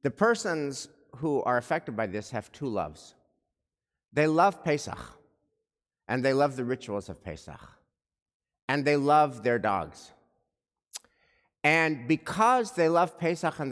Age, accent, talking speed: 50-69, American, 135 wpm